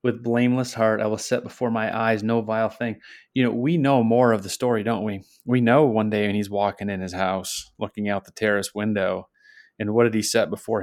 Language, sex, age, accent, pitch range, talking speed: English, male, 30-49, American, 95-115 Hz, 240 wpm